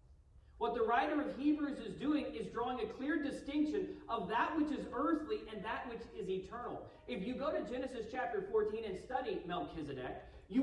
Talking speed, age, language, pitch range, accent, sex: 185 wpm, 40-59, English, 185-300 Hz, American, male